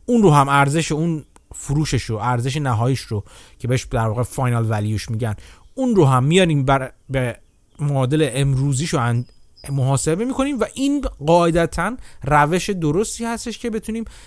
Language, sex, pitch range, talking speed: Persian, male, 130-200 Hz, 145 wpm